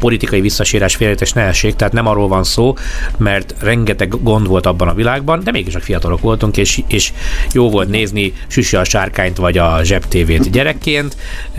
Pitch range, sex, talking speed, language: 90-115 Hz, male, 175 wpm, Hungarian